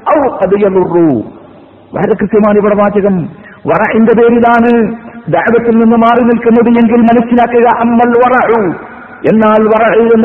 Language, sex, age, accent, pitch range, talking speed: Malayalam, male, 50-69, native, 225-245 Hz, 110 wpm